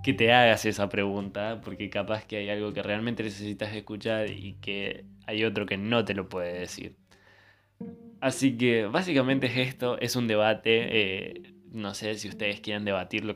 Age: 20-39